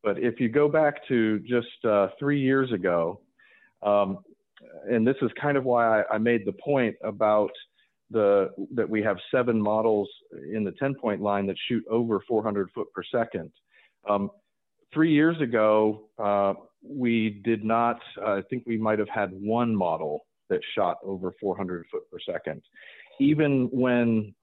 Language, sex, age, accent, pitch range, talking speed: English, male, 40-59, American, 105-130 Hz, 165 wpm